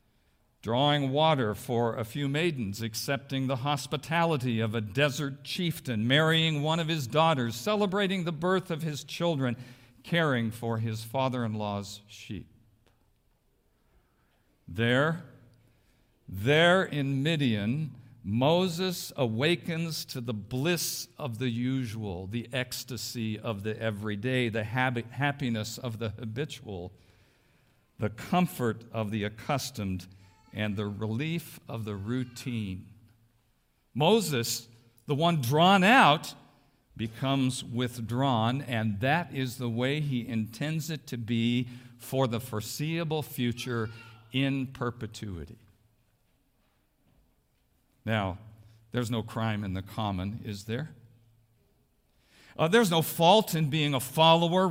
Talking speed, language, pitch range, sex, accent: 110 wpm, English, 115-150 Hz, male, American